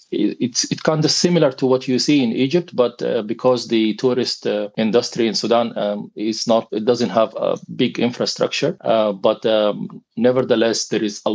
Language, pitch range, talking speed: English, 105-120 Hz, 190 wpm